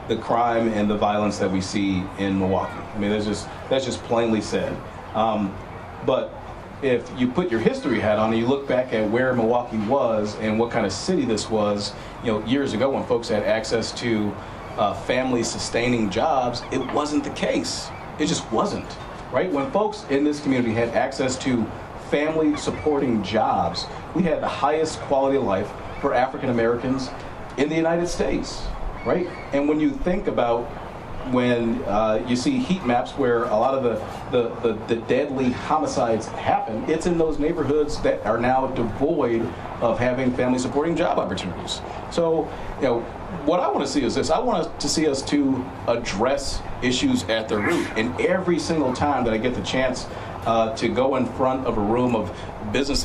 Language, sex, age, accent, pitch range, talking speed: English, male, 40-59, American, 105-135 Hz, 180 wpm